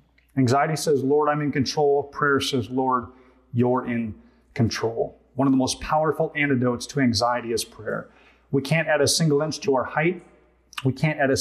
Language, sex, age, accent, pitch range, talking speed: English, male, 30-49, American, 125-150 Hz, 185 wpm